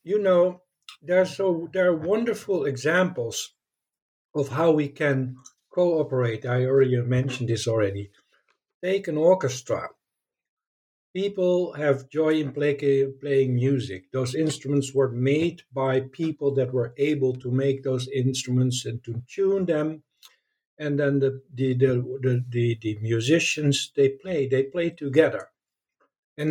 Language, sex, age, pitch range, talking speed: English, male, 60-79, 135-180 Hz, 135 wpm